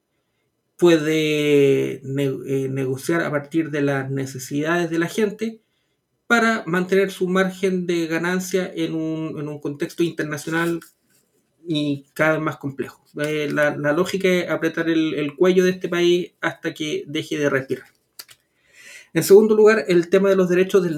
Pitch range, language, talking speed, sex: 145-175 Hz, Spanish, 155 wpm, male